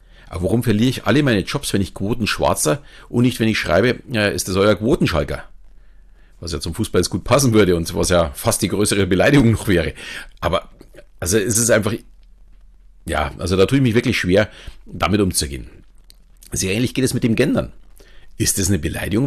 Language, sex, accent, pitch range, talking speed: German, male, German, 85-110 Hz, 195 wpm